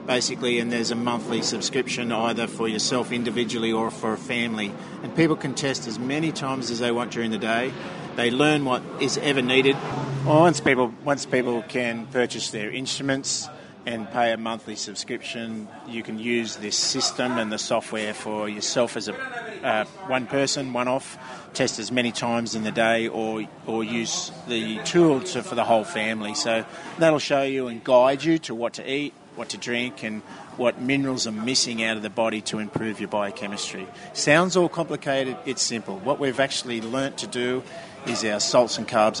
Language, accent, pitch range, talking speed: English, Australian, 115-135 Hz, 185 wpm